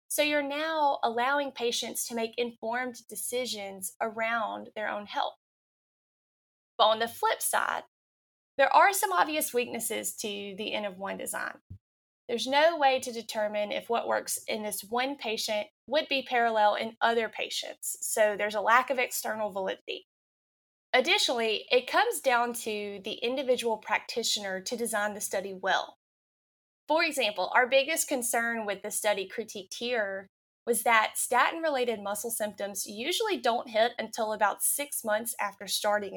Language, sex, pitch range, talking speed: English, female, 210-270 Hz, 150 wpm